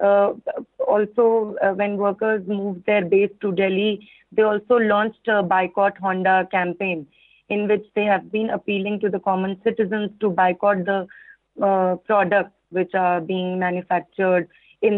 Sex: female